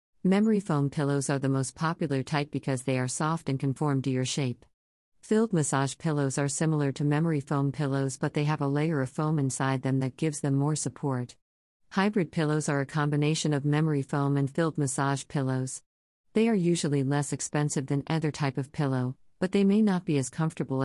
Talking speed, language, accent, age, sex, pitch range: 200 wpm, English, American, 50-69, female, 135-160 Hz